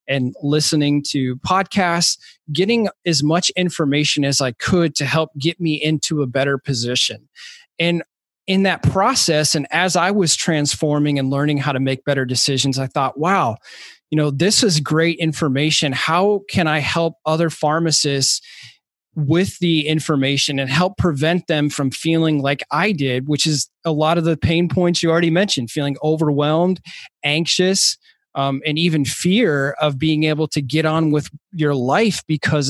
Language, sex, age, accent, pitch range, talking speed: English, male, 20-39, American, 140-165 Hz, 165 wpm